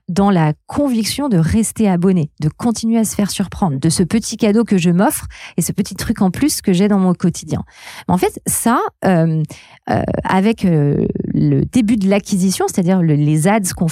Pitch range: 165-220 Hz